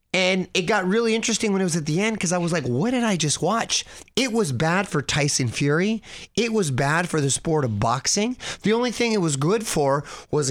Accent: American